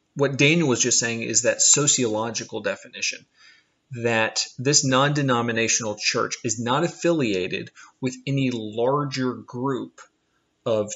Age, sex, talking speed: 30-49, male, 115 wpm